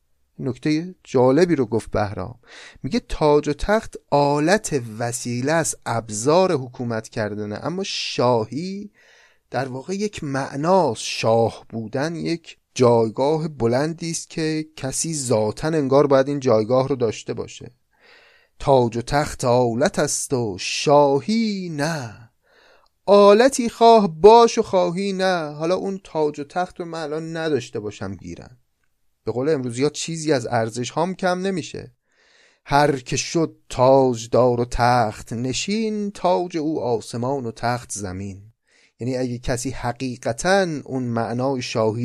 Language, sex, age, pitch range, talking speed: Persian, male, 30-49, 120-165 Hz, 130 wpm